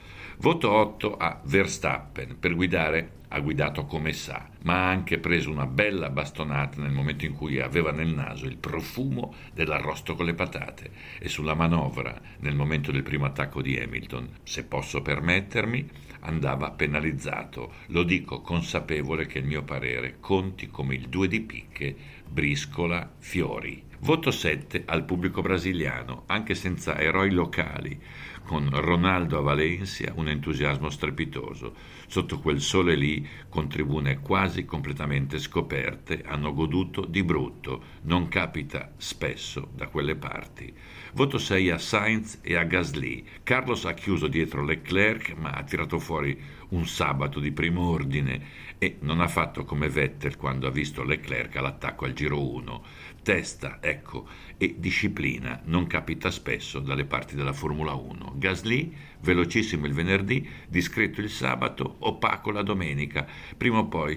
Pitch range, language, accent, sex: 70-95 Hz, Italian, native, male